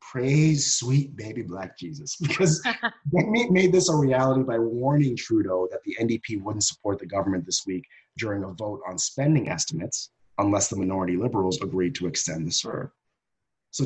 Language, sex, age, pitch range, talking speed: English, male, 30-49, 100-140 Hz, 170 wpm